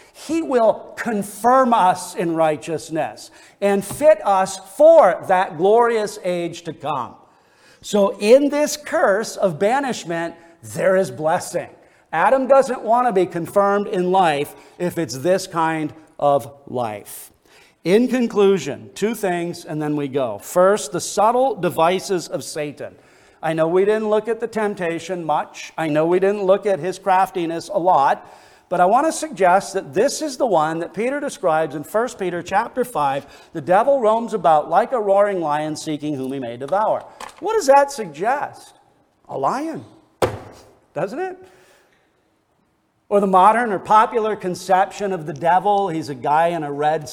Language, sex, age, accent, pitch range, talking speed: English, male, 50-69, American, 160-220 Hz, 160 wpm